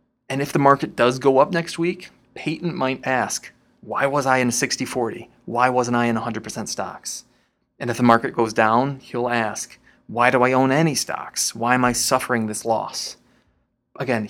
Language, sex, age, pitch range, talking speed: English, male, 20-39, 110-130 Hz, 185 wpm